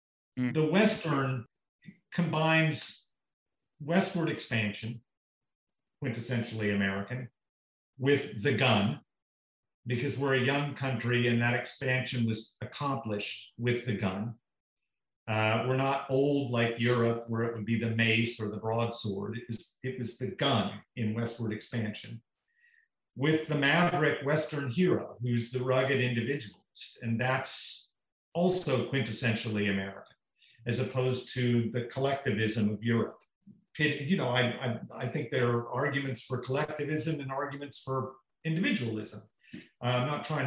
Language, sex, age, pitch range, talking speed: English, male, 50-69, 110-140 Hz, 125 wpm